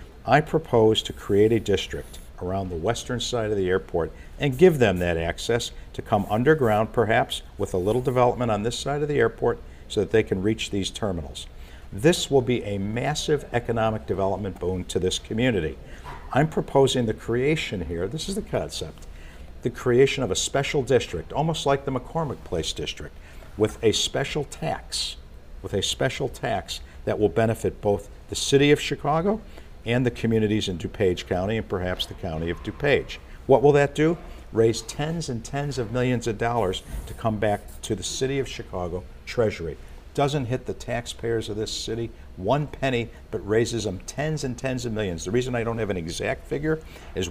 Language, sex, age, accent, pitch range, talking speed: English, male, 50-69, American, 90-125 Hz, 185 wpm